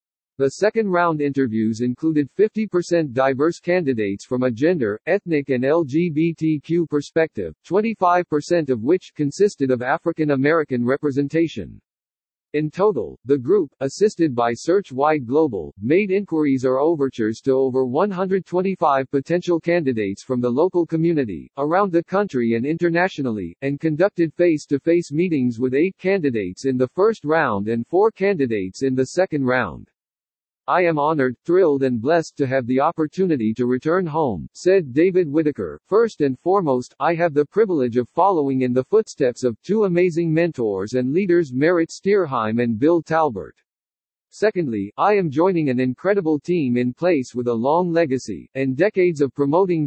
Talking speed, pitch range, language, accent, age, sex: 150 wpm, 130-175 Hz, English, American, 50-69, male